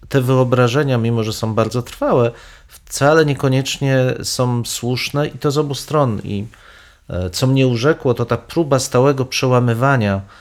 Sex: male